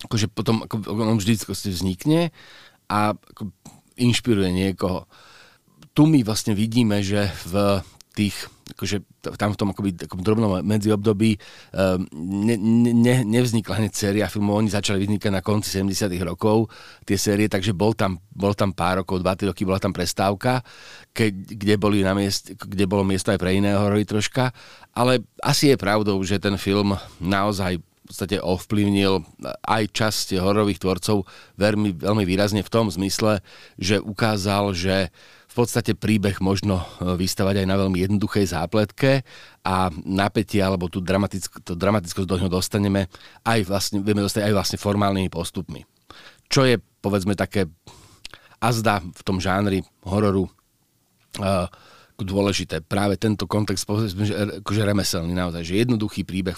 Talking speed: 145 wpm